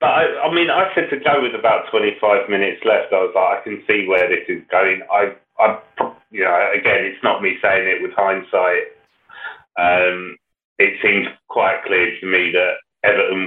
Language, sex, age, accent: English, male, 30-49, British